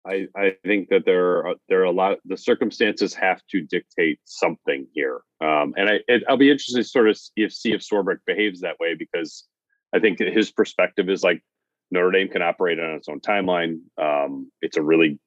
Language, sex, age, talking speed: English, male, 40-59, 220 wpm